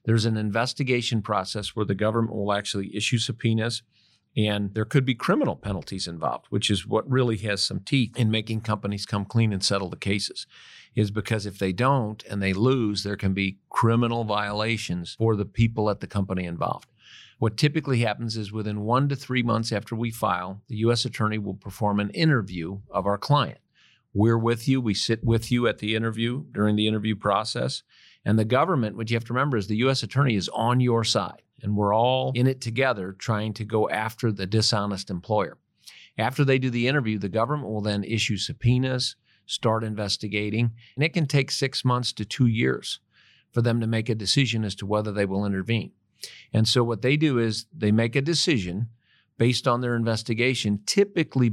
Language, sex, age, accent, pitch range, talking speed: English, male, 50-69, American, 105-125 Hz, 195 wpm